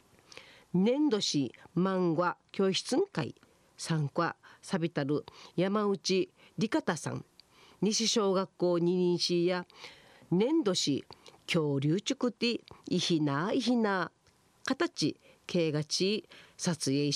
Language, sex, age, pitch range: Japanese, female, 40-59, 170-225 Hz